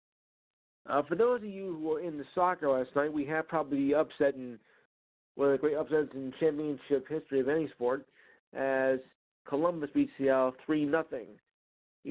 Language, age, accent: Japanese, 50-69, American